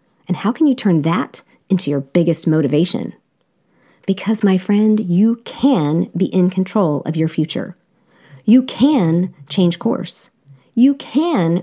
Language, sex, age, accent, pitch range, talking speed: English, female, 40-59, American, 170-245 Hz, 140 wpm